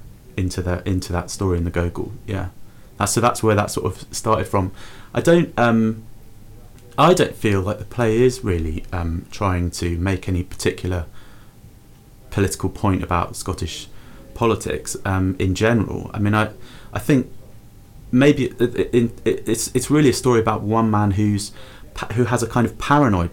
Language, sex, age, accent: English, male, 30-49, British